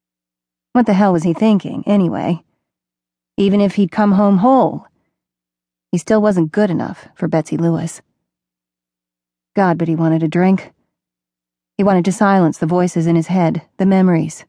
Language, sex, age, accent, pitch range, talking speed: English, female, 30-49, American, 150-200 Hz, 155 wpm